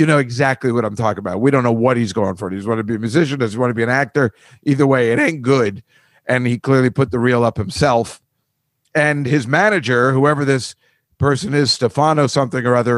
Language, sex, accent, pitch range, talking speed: English, male, American, 135-200 Hz, 235 wpm